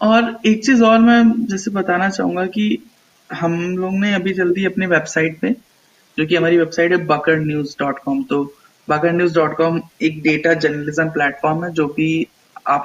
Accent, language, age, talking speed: Indian, English, 20-39, 155 wpm